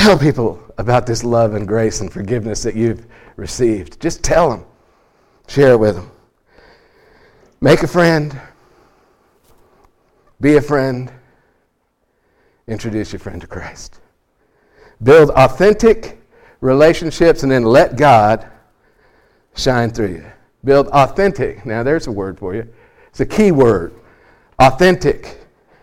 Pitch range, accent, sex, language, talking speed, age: 125-170 Hz, American, male, English, 125 wpm, 50-69